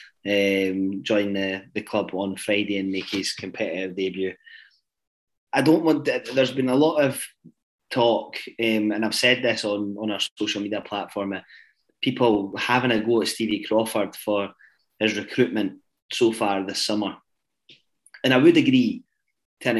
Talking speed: 160 wpm